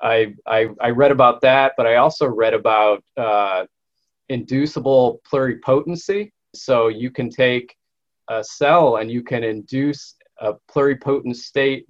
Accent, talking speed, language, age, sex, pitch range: American, 130 wpm, English, 30-49, male, 115-135 Hz